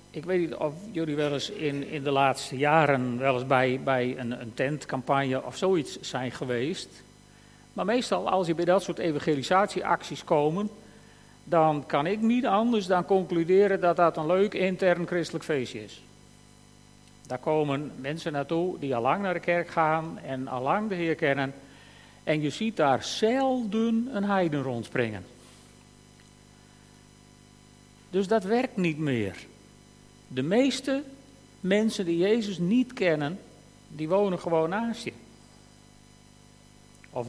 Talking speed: 145 wpm